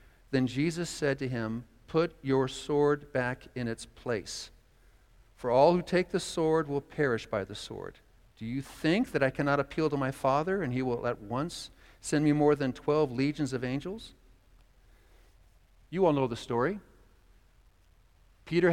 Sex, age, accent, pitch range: male, 50-69, American, 125-175 Hz